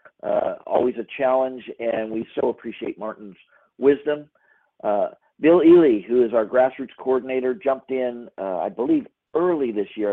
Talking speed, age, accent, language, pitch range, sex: 155 wpm, 50-69, American, English, 115-130 Hz, male